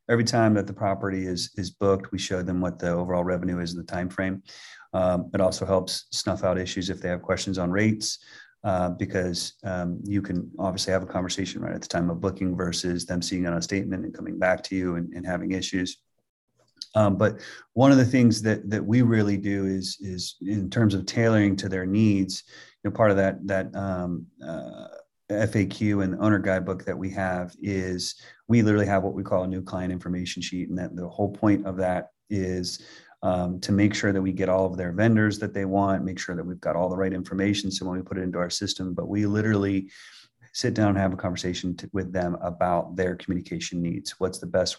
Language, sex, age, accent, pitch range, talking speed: English, male, 30-49, American, 90-100 Hz, 225 wpm